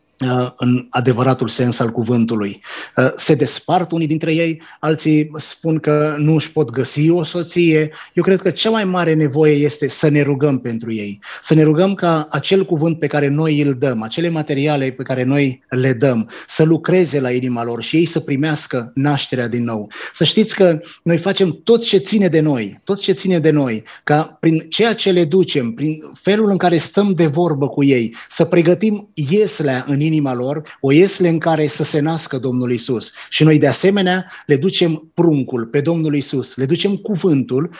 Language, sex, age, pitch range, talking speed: Romanian, male, 20-39, 135-170 Hz, 190 wpm